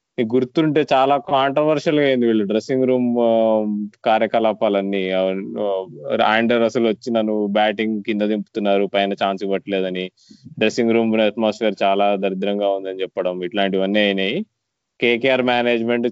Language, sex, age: Telugu, male, 20-39